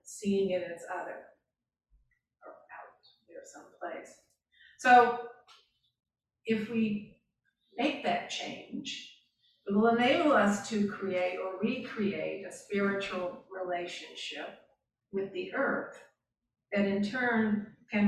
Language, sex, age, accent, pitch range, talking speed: English, female, 40-59, American, 185-225 Hz, 105 wpm